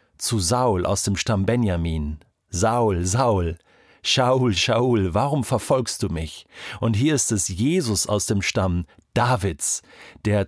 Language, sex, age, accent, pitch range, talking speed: German, male, 50-69, German, 90-120 Hz, 135 wpm